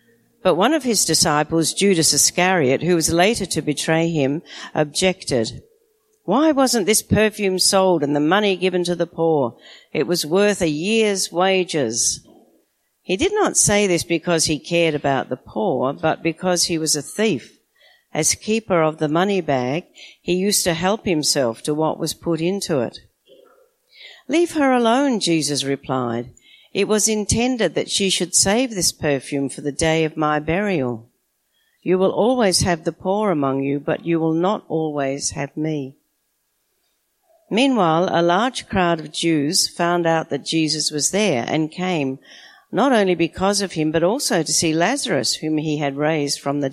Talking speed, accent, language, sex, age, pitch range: 170 wpm, Australian, English, female, 50-69, 150-205 Hz